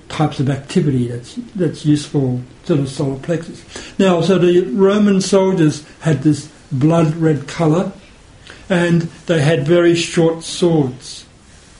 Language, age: English, 60-79